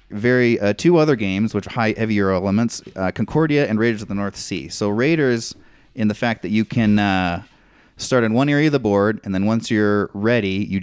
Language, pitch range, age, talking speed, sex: English, 100-120 Hz, 30-49, 220 wpm, male